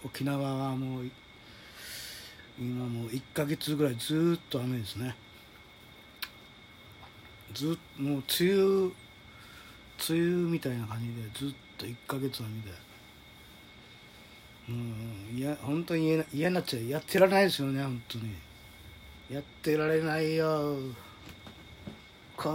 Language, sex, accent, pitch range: Japanese, male, native, 105-140 Hz